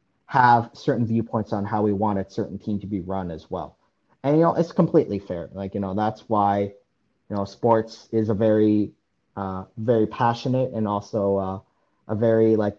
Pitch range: 100-125 Hz